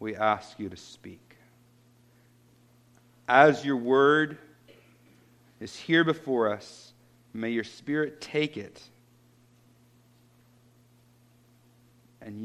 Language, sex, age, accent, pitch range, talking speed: English, male, 50-69, American, 120-150 Hz, 85 wpm